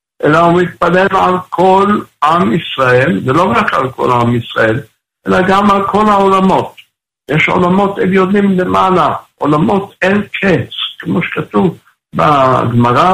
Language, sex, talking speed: Hebrew, male, 130 wpm